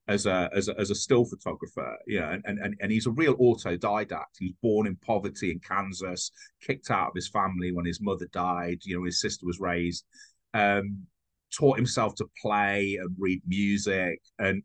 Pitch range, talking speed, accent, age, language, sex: 90-110 Hz, 195 wpm, British, 30-49, English, male